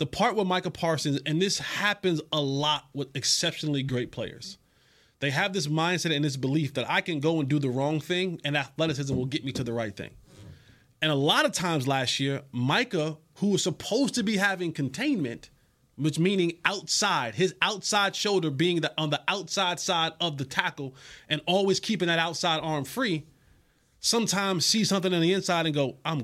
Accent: American